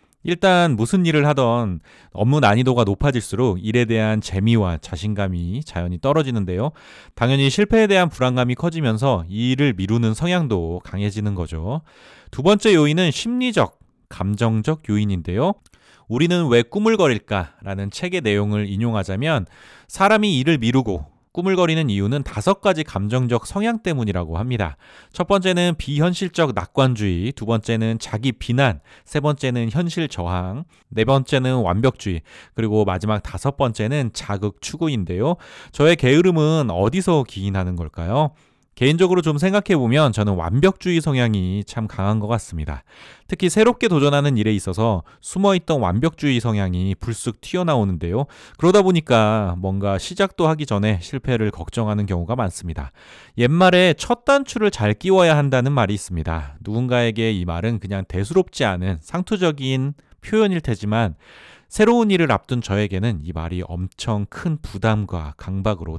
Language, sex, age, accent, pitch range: Korean, male, 30-49, native, 100-160 Hz